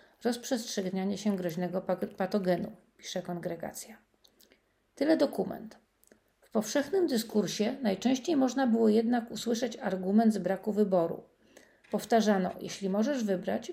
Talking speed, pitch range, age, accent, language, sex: 105 wpm, 195-235 Hz, 40-59, native, Polish, female